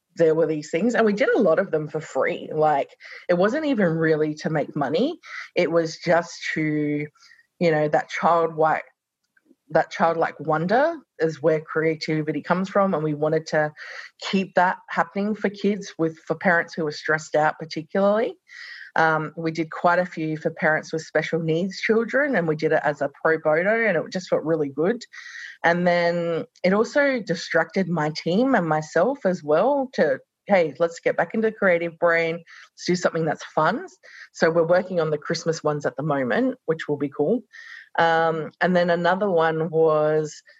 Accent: Australian